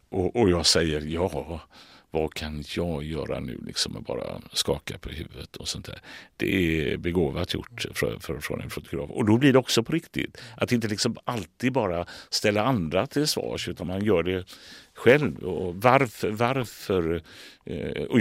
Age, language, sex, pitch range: 60-79, English, male, 85-105 Hz